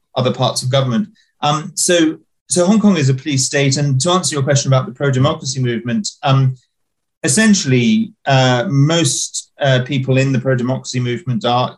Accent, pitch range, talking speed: British, 125-140 Hz, 170 wpm